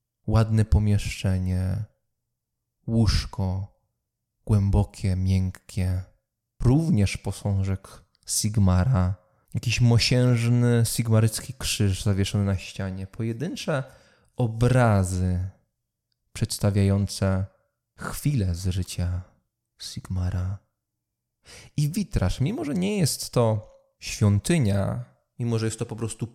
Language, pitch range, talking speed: English, 100-120 Hz, 80 wpm